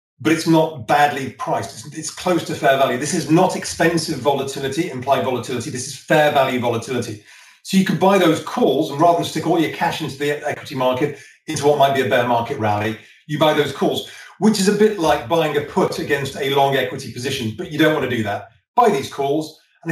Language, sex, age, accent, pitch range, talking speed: English, male, 40-59, British, 135-170 Hz, 230 wpm